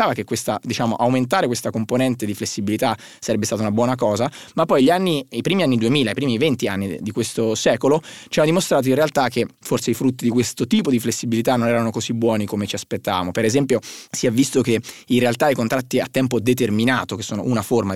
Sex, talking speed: male, 220 wpm